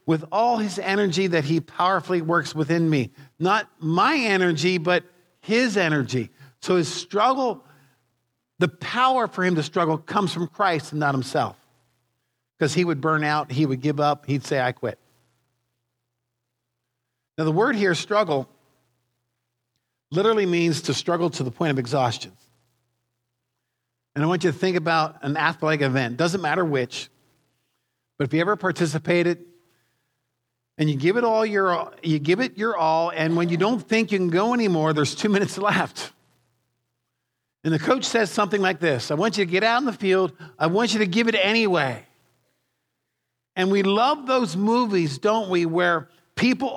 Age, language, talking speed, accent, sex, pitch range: 50-69, English, 170 wpm, American, male, 130-190 Hz